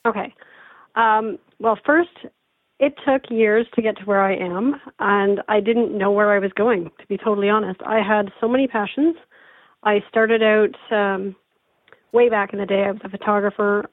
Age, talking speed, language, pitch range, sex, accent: 40-59, 185 wpm, English, 195-225 Hz, female, American